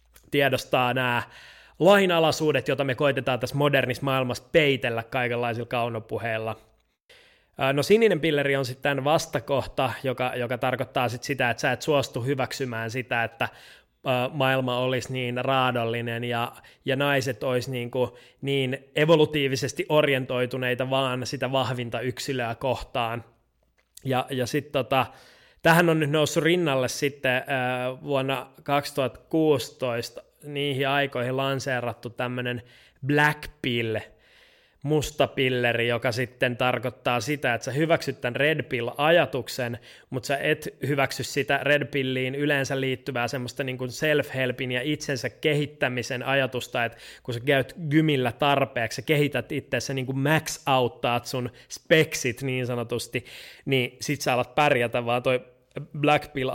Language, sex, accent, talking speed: Finnish, male, native, 125 wpm